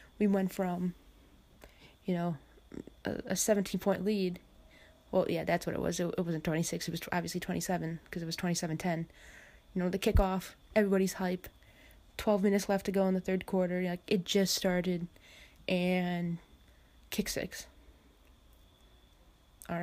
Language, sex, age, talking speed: English, female, 20-39, 150 wpm